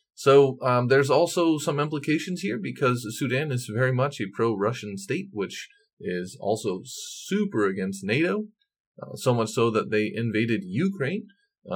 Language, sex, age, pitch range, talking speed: English, male, 30-49, 110-150 Hz, 150 wpm